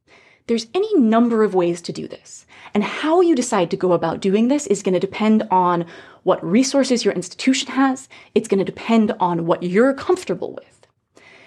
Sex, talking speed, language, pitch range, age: female, 180 wpm, English, 185-275 Hz, 30-49